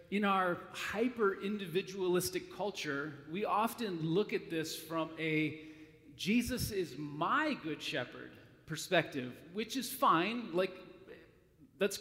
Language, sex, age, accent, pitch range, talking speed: English, male, 40-59, American, 155-205 Hz, 110 wpm